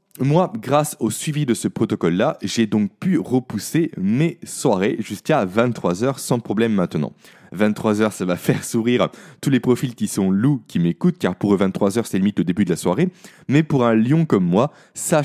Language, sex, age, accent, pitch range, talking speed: French, male, 20-39, French, 110-165 Hz, 195 wpm